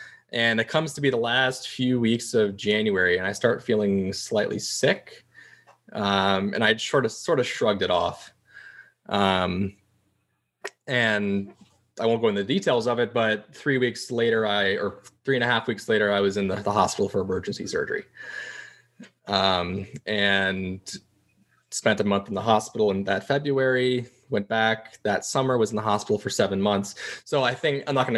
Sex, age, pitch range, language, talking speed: male, 20-39, 100-125 Hz, English, 185 wpm